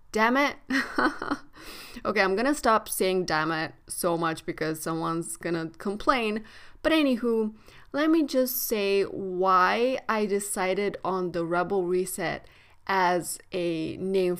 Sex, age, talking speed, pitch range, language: female, 30-49, 130 wpm, 195-250 Hz, English